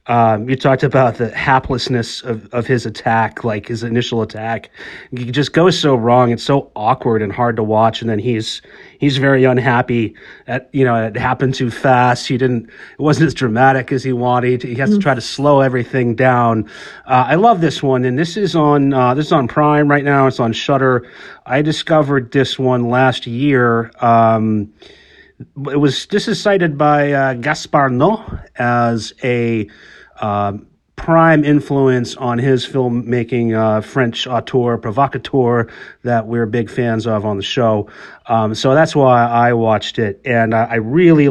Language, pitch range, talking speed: English, 115-140 Hz, 175 wpm